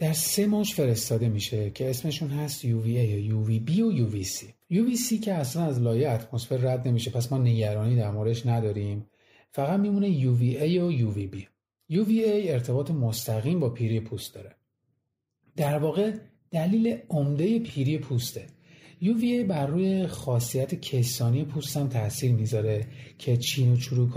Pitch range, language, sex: 115-155 Hz, Persian, male